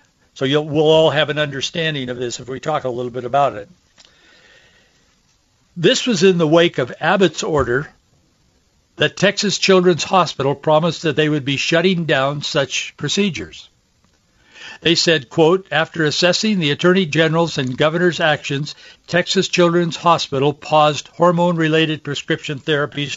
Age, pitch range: 60-79, 140-170 Hz